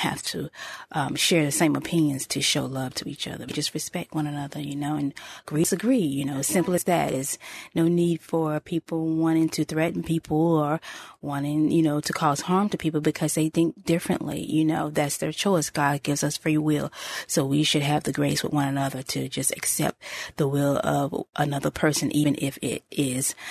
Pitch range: 145-170 Hz